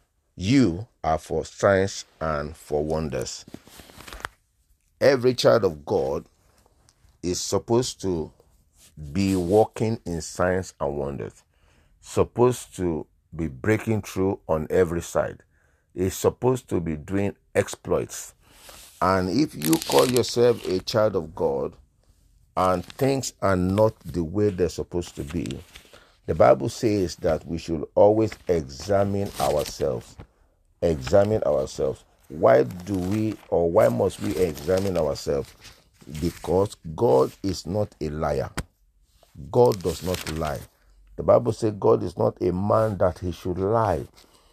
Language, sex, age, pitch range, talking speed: English, male, 50-69, 85-110 Hz, 130 wpm